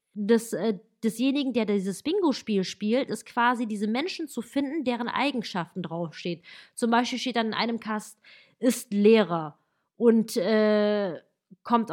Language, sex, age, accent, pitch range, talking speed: German, female, 20-39, German, 200-255 Hz, 135 wpm